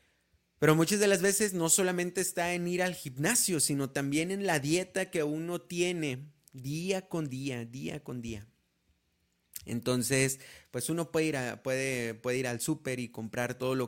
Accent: Mexican